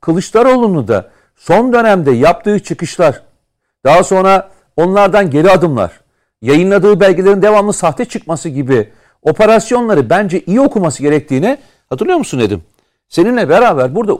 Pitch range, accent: 155-210 Hz, native